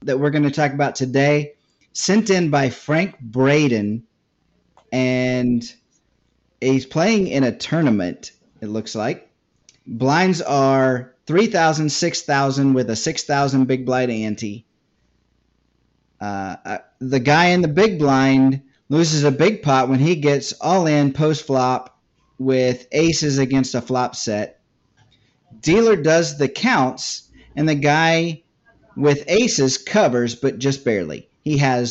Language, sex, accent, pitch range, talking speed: English, male, American, 125-155 Hz, 135 wpm